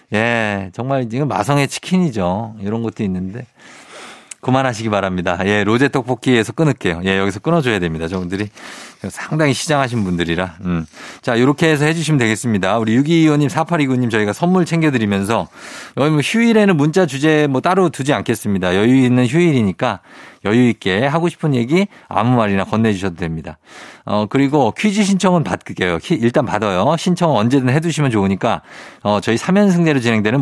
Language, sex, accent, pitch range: Korean, male, native, 110-165 Hz